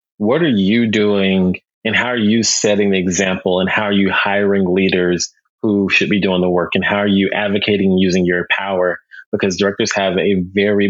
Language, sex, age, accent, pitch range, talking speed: English, male, 30-49, American, 95-115 Hz, 200 wpm